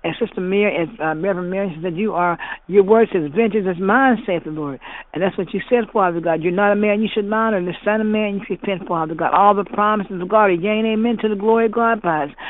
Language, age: English, 60-79